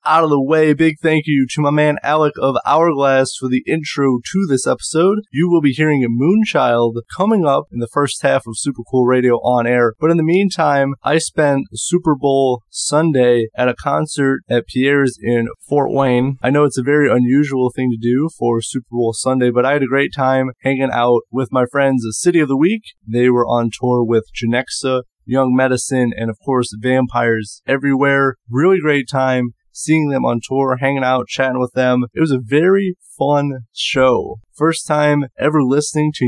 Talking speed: 195 wpm